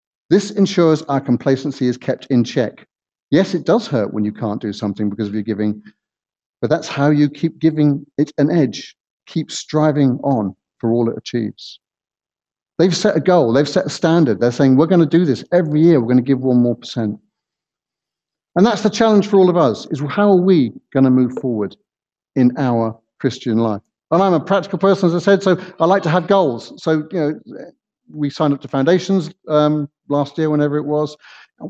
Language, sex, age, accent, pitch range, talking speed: English, male, 50-69, British, 120-165 Hz, 205 wpm